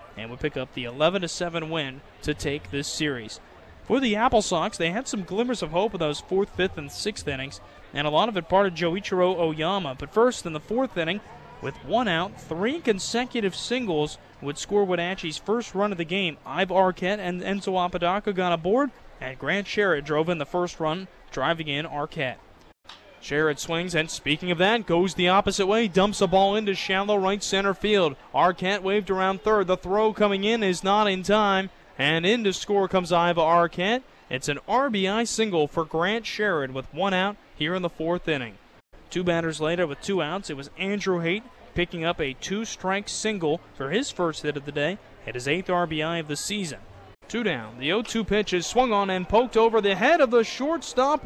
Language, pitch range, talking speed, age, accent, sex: English, 160-210 Hz, 200 wpm, 30-49, American, male